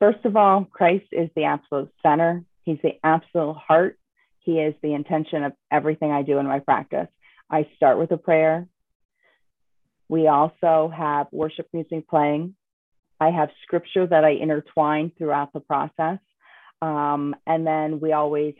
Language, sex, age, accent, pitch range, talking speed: English, female, 40-59, American, 150-170 Hz, 155 wpm